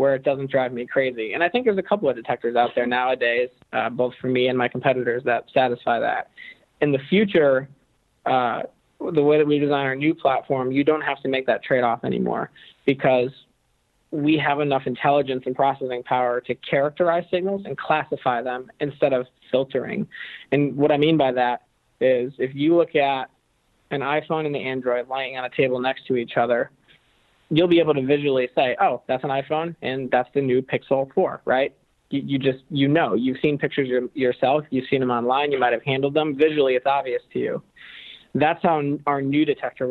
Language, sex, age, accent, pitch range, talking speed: English, male, 20-39, American, 130-150 Hz, 200 wpm